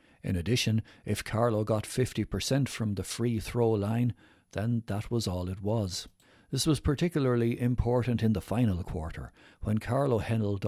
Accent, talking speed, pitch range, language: Irish, 155 wpm, 95-120 Hz, English